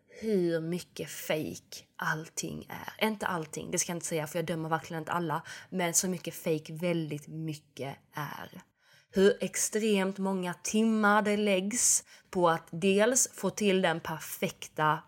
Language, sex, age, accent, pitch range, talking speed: Swedish, female, 20-39, native, 165-200 Hz, 150 wpm